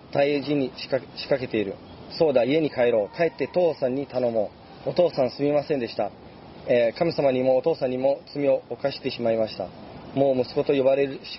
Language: Japanese